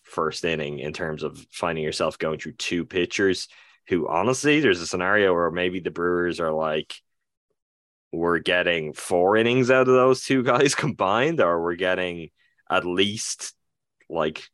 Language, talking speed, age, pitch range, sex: English, 155 wpm, 20-39, 80-105 Hz, male